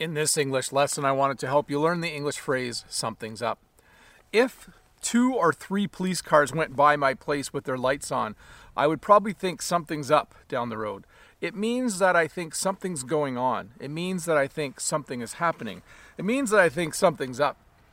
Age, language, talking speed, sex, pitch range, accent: 40-59, English, 205 wpm, male, 145-195 Hz, American